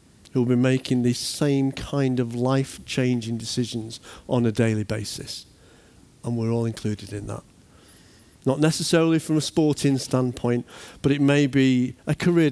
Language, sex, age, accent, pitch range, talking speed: English, male, 50-69, British, 115-140 Hz, 155 wpm